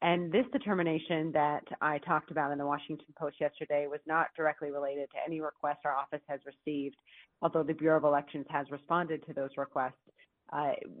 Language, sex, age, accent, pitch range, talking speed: English, female, 30-49, American, 140-160 Hz, 185 wpm